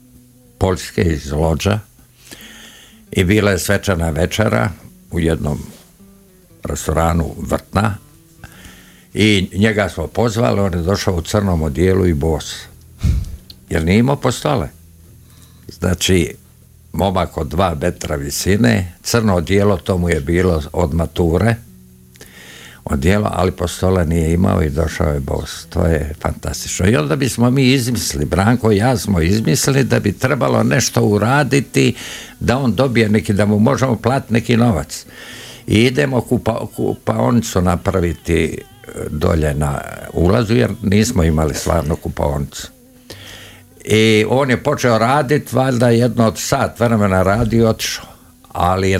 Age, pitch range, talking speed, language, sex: 60-79, 85-115 Hz, 130 wpm, Croatian, male